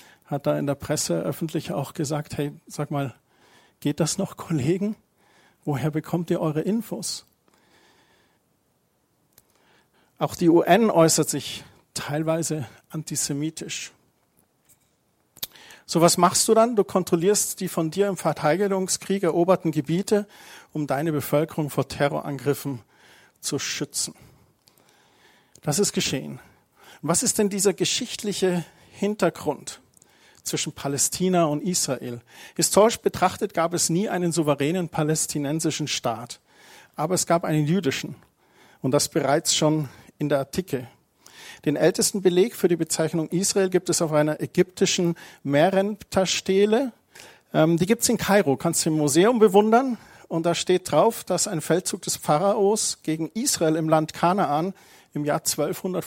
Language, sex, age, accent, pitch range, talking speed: German, male, 50-69, German, 150-190 Hz, 130 wpm